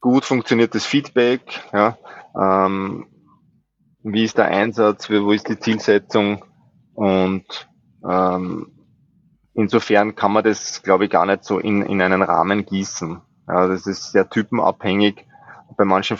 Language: German